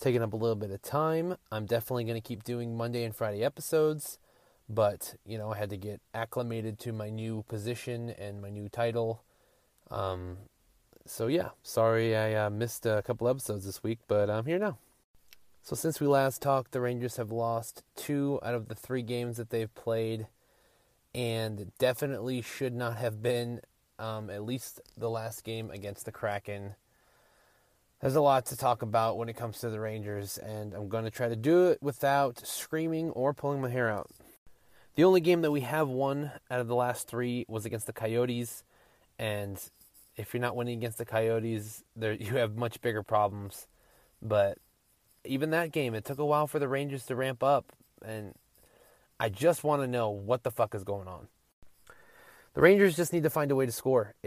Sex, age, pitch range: male, 20-39, 110-130 Hz